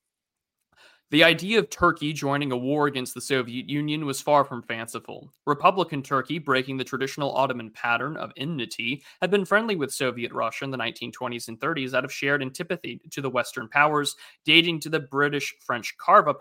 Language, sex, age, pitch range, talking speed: English, male, 30-49, 130-160 Hz, 175 wpm